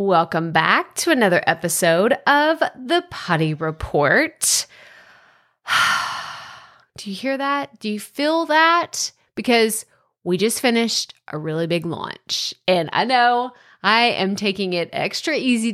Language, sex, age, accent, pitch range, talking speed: English, female, 30-49, American, 180-270 Hz, 130 wpm